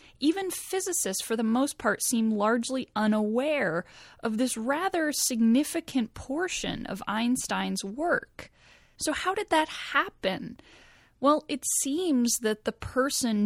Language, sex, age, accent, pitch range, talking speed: English, female, 10-29, American, 195-245 Hz, 125 wpm